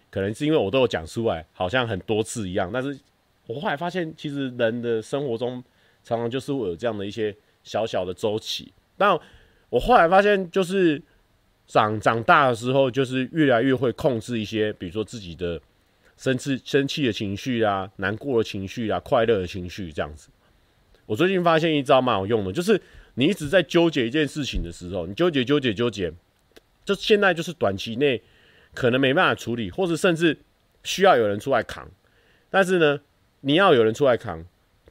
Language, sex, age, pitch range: Chinese, male, 30-49, 95-135 Hz